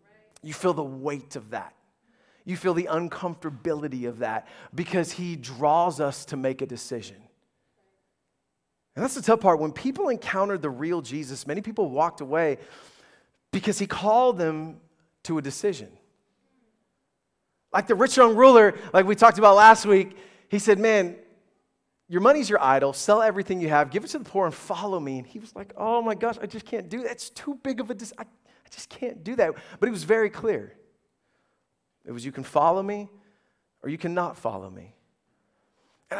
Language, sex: English, male